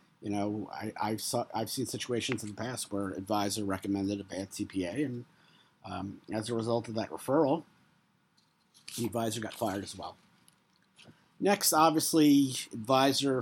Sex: male